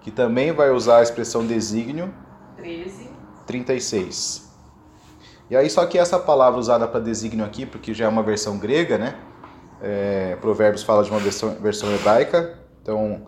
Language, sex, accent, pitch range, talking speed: Portuguese, male, Brazilian, 105-140 Hz, 165 wpm